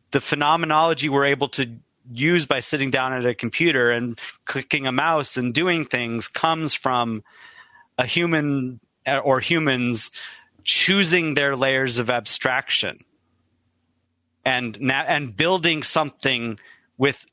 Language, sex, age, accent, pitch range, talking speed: English, male, 30-49, American, 120-145 Hz, 125 wpm